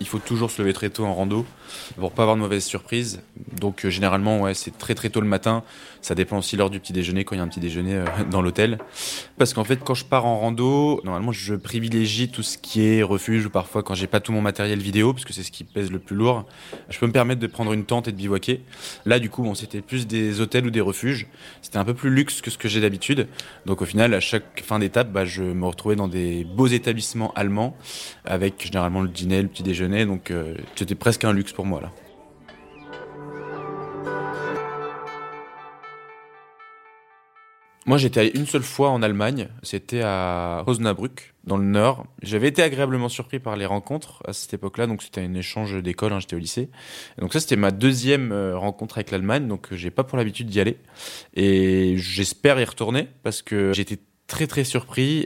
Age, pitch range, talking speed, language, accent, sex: 20-39, 100-125 Hz, 215 wpm, French, French, male